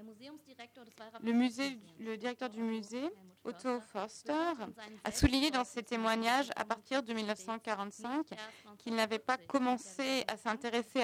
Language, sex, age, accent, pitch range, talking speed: French, female, 20-39, French, 205-245 Hz, 120 wpm